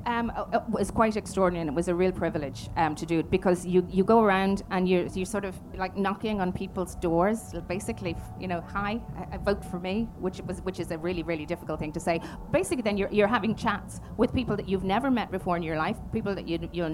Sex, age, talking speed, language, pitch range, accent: female, 30-49, 245 wpm, English, 160-185 Hz, Irish